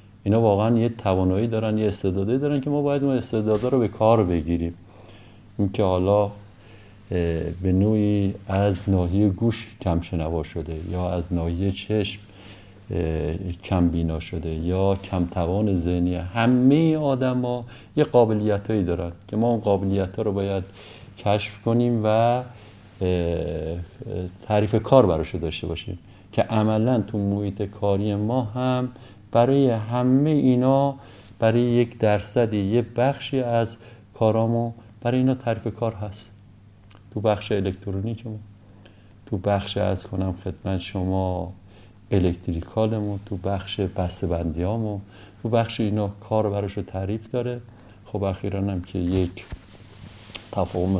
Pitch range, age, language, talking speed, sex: 95-115 Hz, 50-69, Persian, 125 wpm, male